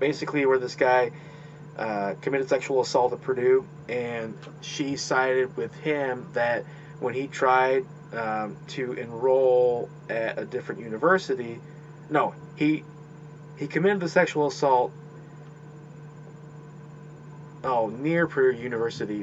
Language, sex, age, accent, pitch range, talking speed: English, male, 30-49, American, 125-150 Hz, 115 wpm